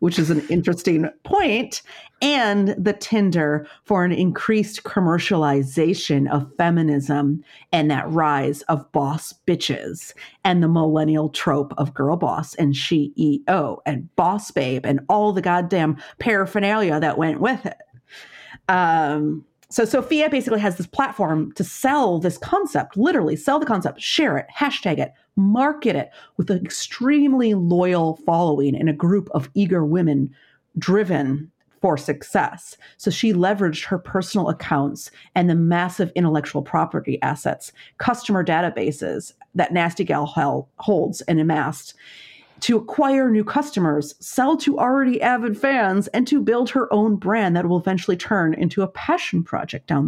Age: 40-59